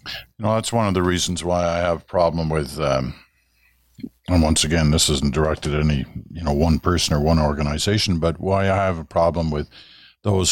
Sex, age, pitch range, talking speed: male, 50-69, 70-90 Hz, 210 wpm